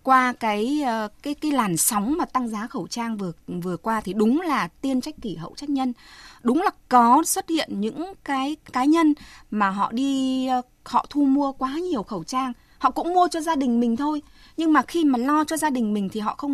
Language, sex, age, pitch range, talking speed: Vietnamese, female, 20-39, 215-285 Hz, 225 wpm